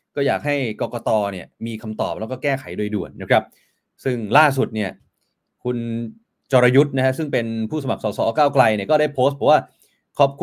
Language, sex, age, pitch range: Thai, male, 30-49, 120-175 Hz